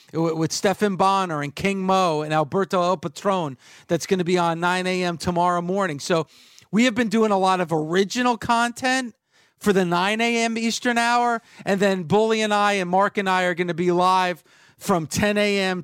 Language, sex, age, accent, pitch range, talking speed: English, male, 40-59, American, 180-220 Hz, 195 wpm